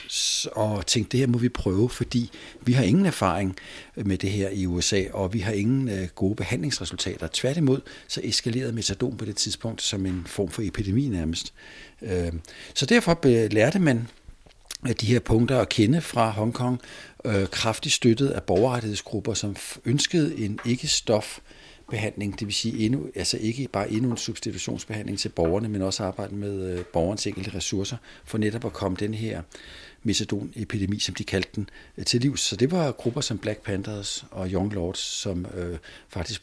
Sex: male